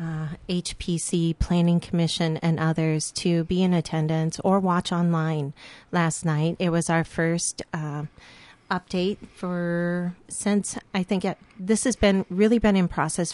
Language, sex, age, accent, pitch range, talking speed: English, female, 40-59, American, 160-190 Hz, 150 wpm